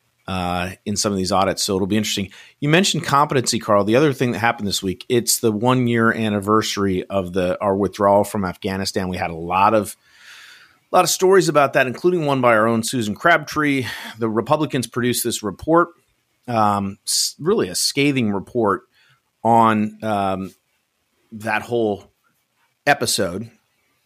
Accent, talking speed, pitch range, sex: American, 160 wpm, 95-115 Hz, male